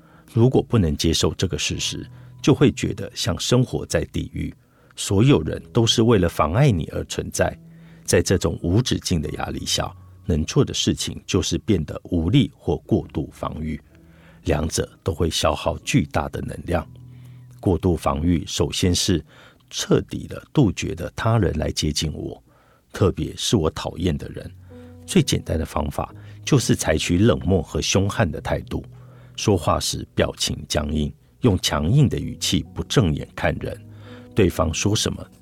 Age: 50-69